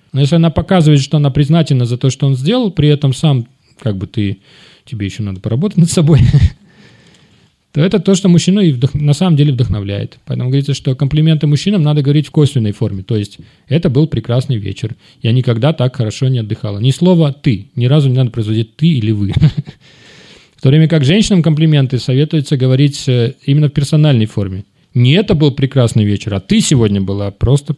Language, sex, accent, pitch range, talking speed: Russian, male, native, 125-160 Hz, 190 wpm